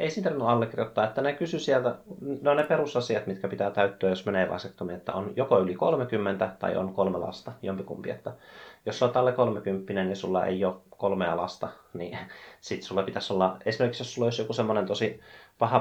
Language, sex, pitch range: Finnish, male, 85-115 Hz